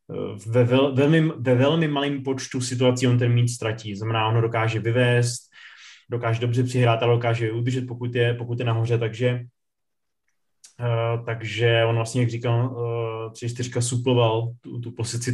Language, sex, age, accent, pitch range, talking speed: Czech, male, 20-39, native, 115-130 Hz, 160 wpm